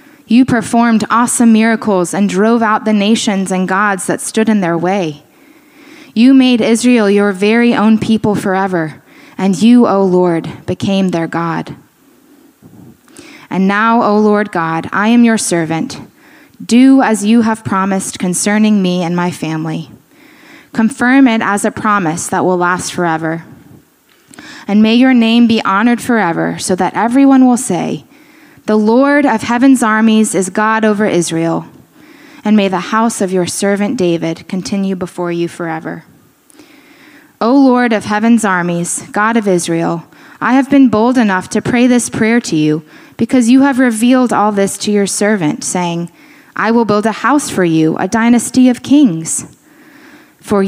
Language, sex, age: English, female, 20-39